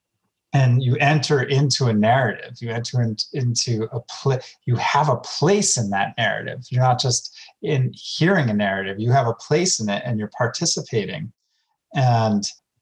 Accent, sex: American, male